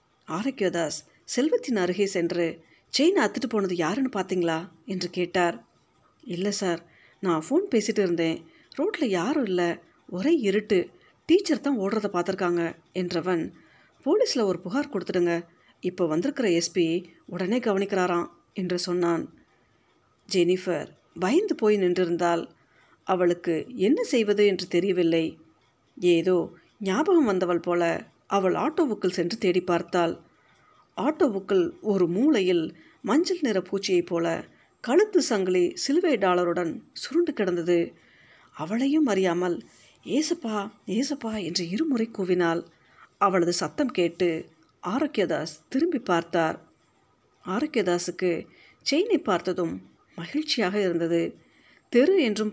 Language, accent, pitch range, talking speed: Tamil, native, 175-255 Hz, 100 wpm